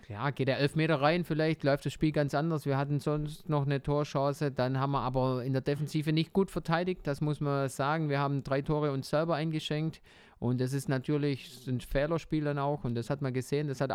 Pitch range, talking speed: 125-145 Hz, 230 wpm